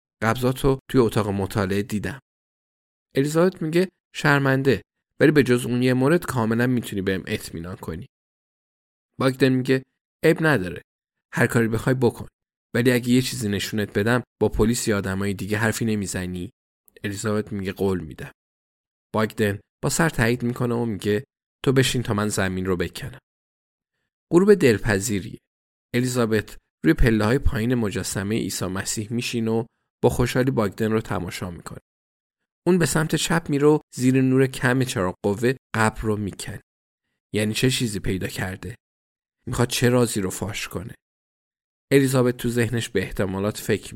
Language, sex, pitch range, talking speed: Persian, male, 100-130 Hz, 140 wpm